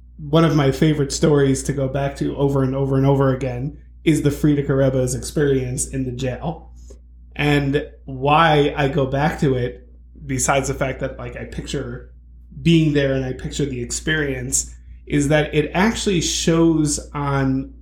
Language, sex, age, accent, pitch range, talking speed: English, male, 20-39, American, 130-150 Hz, 170 wpm